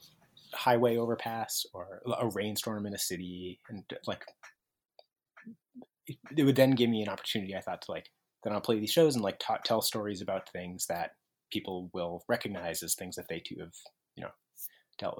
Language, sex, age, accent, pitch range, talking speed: English, male, 30-49, American, 90-110 Hz, 190 wpm